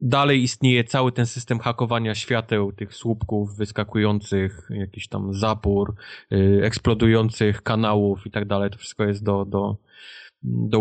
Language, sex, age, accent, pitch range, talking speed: Polish, male, 20-39, native, 105-120 Hz, 130 wpm